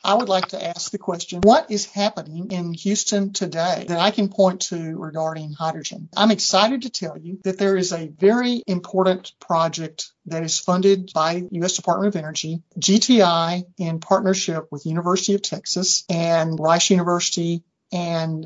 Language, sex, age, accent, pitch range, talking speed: English, male, 50-69, American, 165-195 Hz, 165 wpm